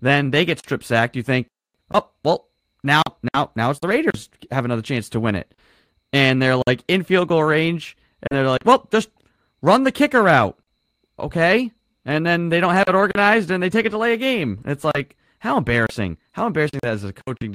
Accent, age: American, 30-49